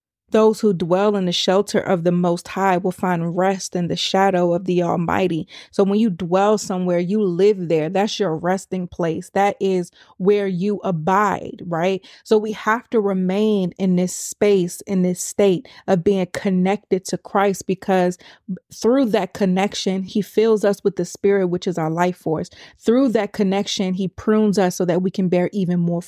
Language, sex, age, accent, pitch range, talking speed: English, female, 30-49, American, 180-205 Hz, 185 wpm